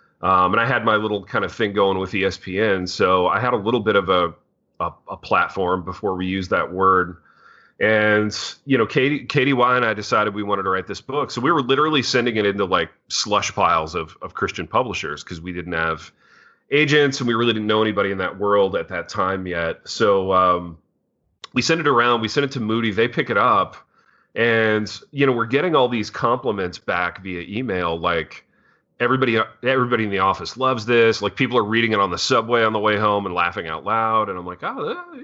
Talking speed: 220 wpm